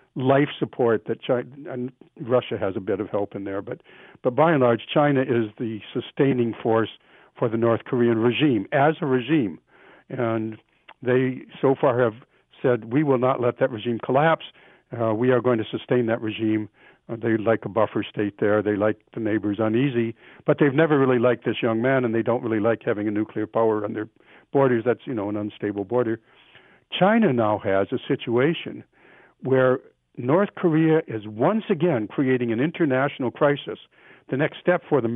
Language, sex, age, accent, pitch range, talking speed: English, male, 60-79, American, 115-140 Hz, 195 wpm